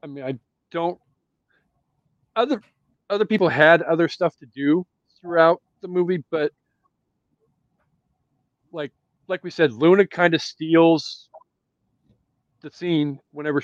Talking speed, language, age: 120 wpm, English, 40-59